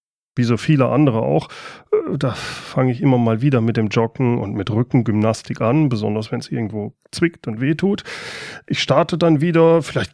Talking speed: 180 wpm